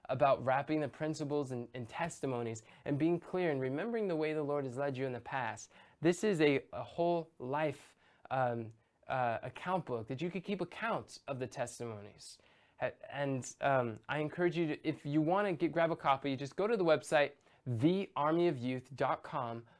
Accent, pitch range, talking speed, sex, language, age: American, 135-170 Hz, 175 wpm, male, English, 20-39